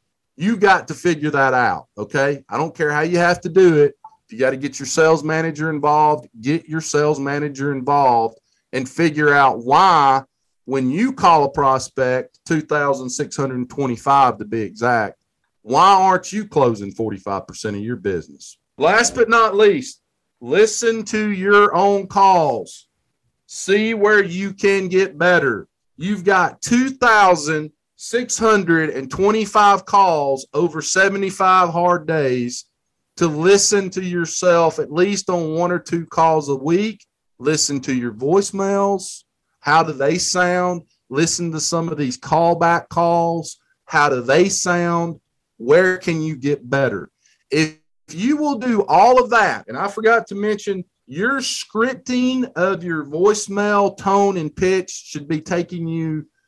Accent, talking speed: American, 145 wpm